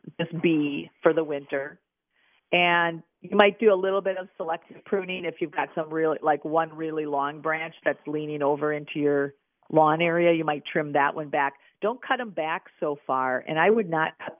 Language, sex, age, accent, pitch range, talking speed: English, female, 50-69, American, 155-190 Hz, 205 wpm